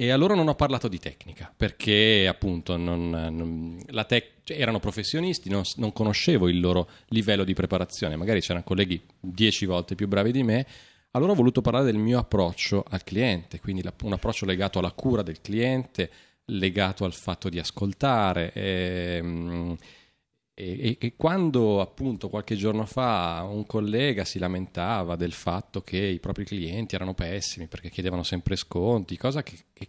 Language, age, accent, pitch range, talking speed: Italian, 30-49, native, 85-110 Hz, 155 wpm